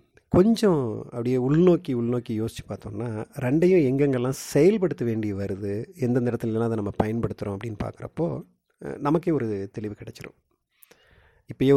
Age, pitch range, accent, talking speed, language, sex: 30-49, 105-130 Hz, native, 115 wpm, Tamil, male